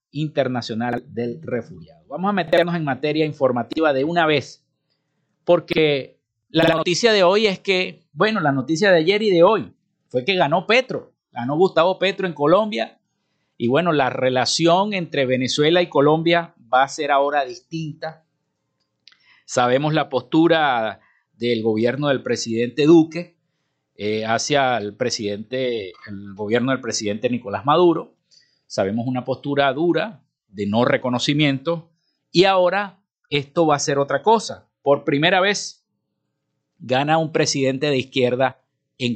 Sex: male